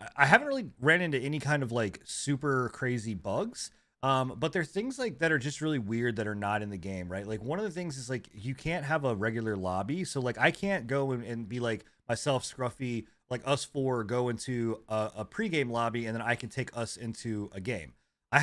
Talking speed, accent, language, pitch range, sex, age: 240 wpm, American, English, 110-140 Hz, male, 30-49